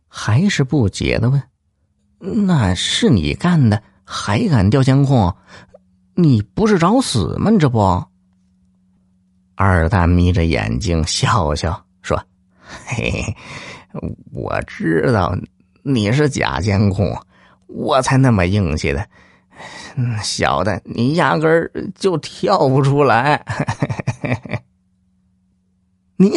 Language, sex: Chinese, male